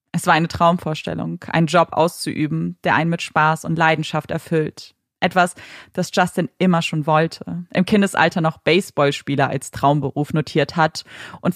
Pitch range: 155-185 Hz